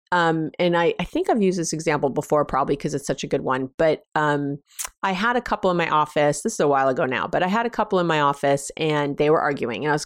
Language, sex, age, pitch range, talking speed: English, female, 30-49, 145-195 Hz, 280 wpm